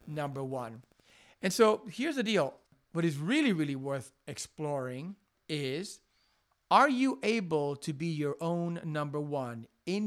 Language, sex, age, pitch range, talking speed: English, male, 50-69, 145-210 Hz, 145 wpm